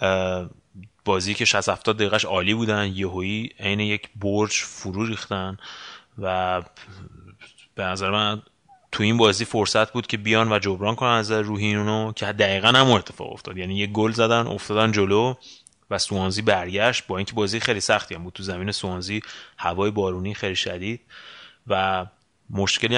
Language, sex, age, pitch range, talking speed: Persian, male, 30-49, 95-110 Hz, 155 wpm